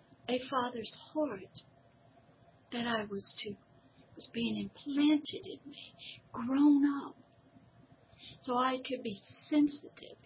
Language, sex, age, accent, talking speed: English, female, 50-69, American, 105 wpm